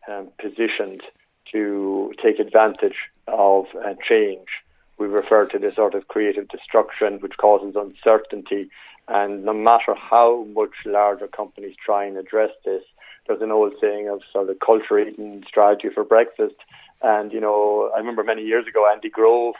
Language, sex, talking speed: English, male, 160 wpm